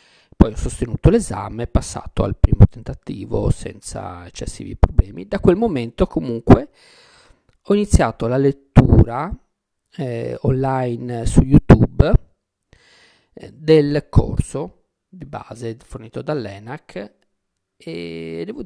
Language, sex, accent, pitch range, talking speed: Italian, male, native, 110-140 Hz, 105 wpm